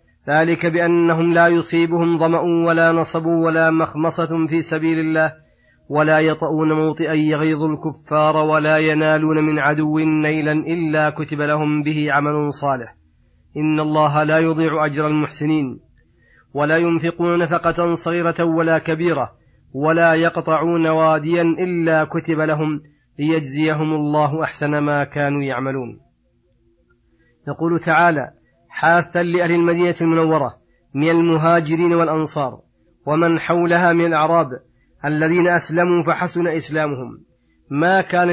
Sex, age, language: male, 30-49, Arabic